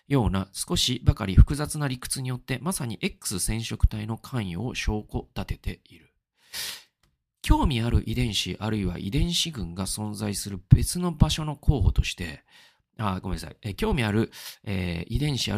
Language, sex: Japanese, male